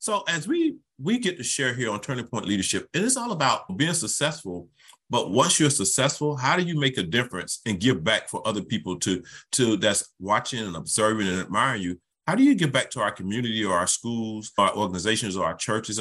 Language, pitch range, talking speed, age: English, 95-135 Hz, 220 wpm, 40-59